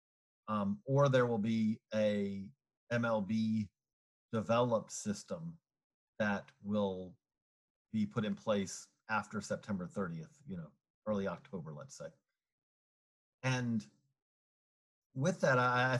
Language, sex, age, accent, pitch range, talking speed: English, male, 40-59, American, 105-130 Hz, 110 wpm